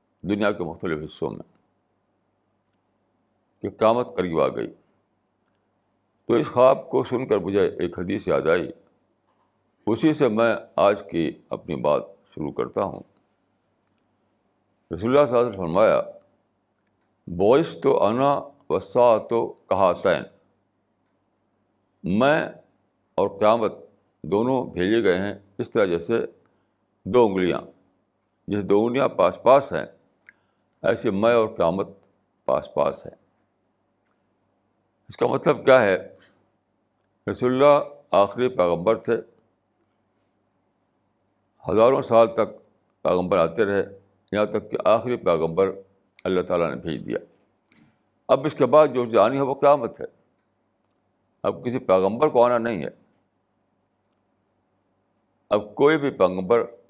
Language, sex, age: Urdu, male, 60-79